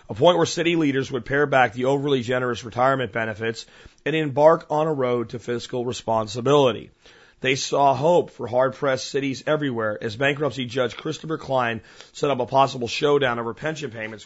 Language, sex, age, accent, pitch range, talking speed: English, male, 40-59, American, 115-145 Hz, 175 wpm